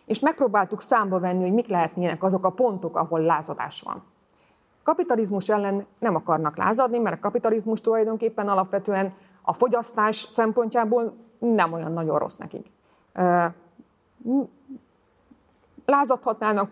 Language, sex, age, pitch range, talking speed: Hungarian, female, 30-49, 175-235 Hz, 115 wpm